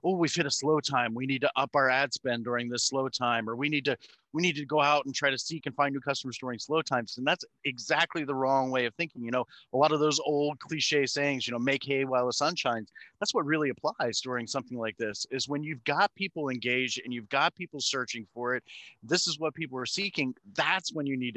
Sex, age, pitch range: male, 30-49, 120-150 Hz